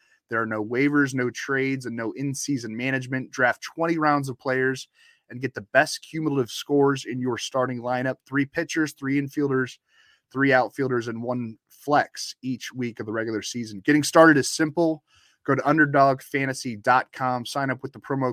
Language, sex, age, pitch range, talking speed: English, male, 20-39, 120-145 Hz, 170 wpm